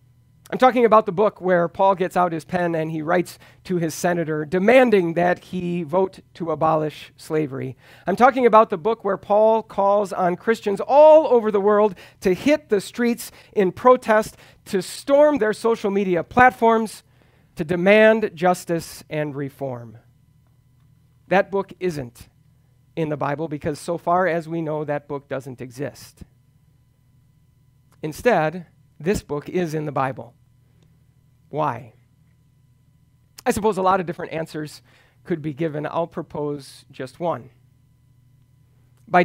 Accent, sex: American, male